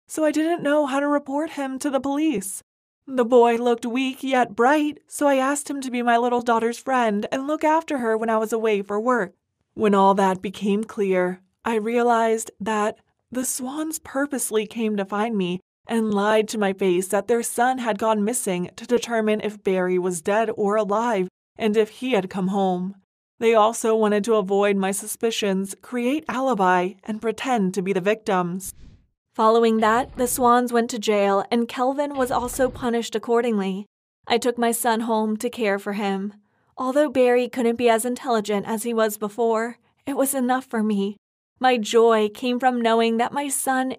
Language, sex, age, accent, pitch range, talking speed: English, female, 20-39, American, 210-250 Hz, 185 wpm